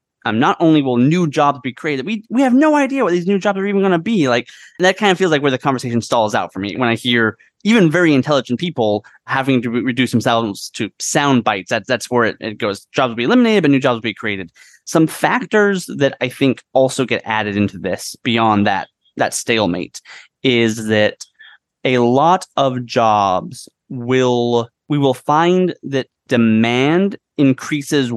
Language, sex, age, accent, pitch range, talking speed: English, male, 20-39, American, 110-145 Hz, 200 wpm